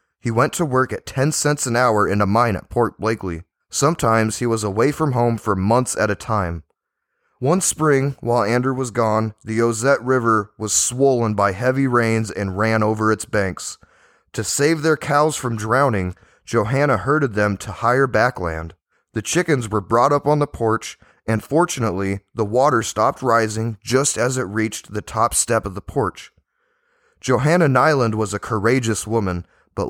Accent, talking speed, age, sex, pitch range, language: American, 175 wpm, 20-39, male, 105-135 Hz, English